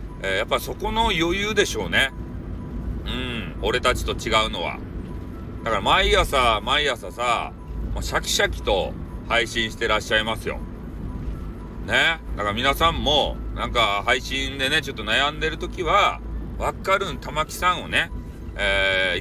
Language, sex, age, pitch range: Japanese, male, 40-59, 90-130 Hz